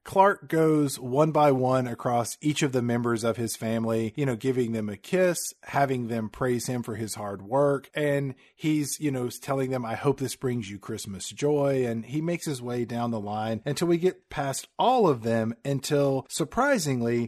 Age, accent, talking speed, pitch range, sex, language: 40-59, American, 200 wpm, 115-140 Hz, male, English